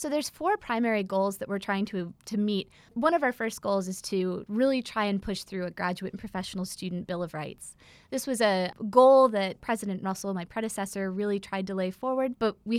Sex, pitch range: female, 190-230 Hz